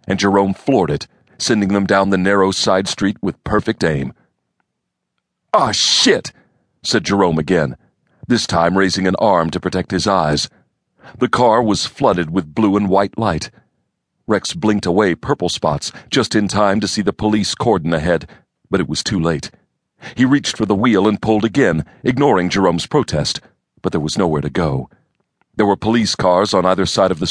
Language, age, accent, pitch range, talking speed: English, 40-59, American, 90-110 Hz, 180 wpm